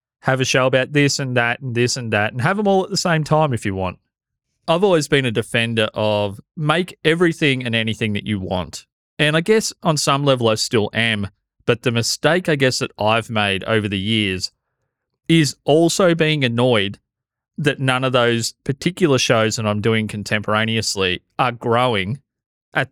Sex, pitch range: male, 110-135 Hz